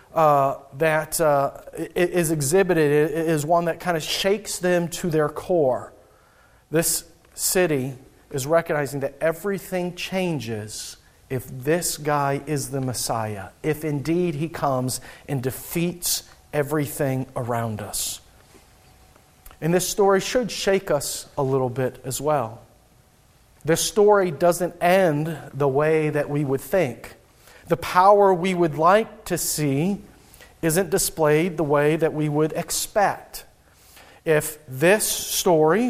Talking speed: 125 wpm